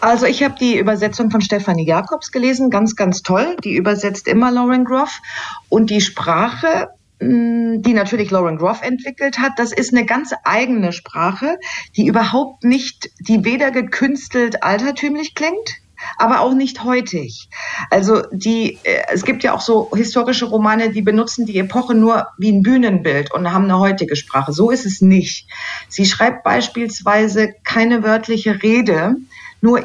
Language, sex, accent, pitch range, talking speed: German, female, German, 190-245 Hz, 155 wpm